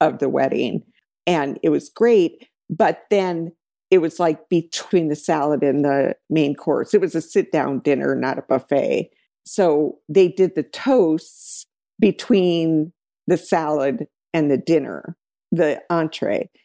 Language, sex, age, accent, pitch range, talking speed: English, female, 50-69, American, 155-190 Hz, 150 wpm